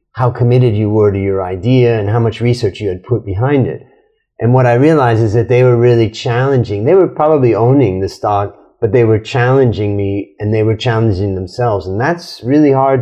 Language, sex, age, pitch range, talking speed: English, male, 30-49, 105-135 Hz, 210 wpm